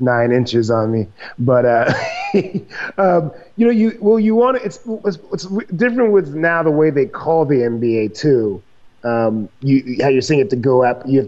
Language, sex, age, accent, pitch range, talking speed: English, male, 30-49, American, 115-140 Hz, 200 wpm